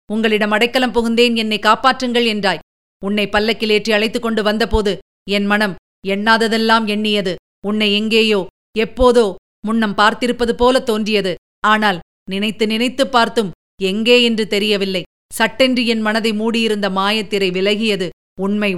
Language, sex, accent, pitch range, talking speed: Tamil, female, native, 205-230 Hz, 120 wpm